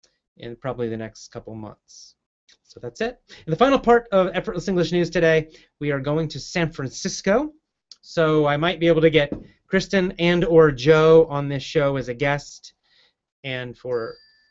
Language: English